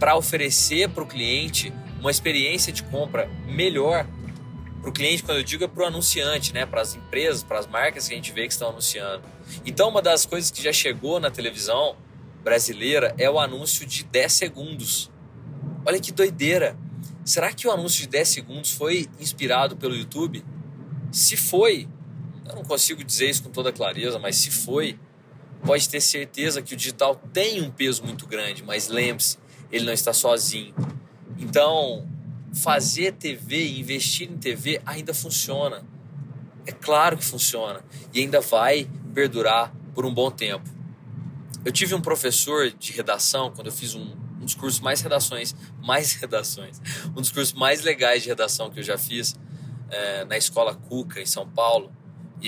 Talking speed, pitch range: 170 wpm, 130-155 Hz